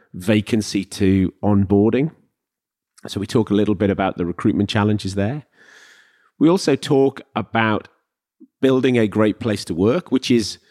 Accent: British